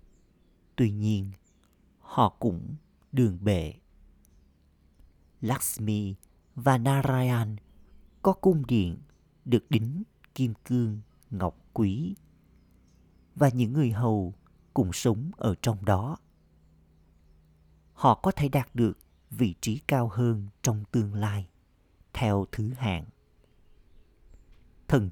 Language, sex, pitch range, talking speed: Vietnamese, male, 85-120 Hz, 105 wpm